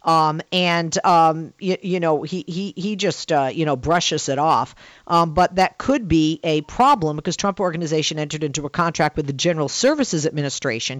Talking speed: 190 wpm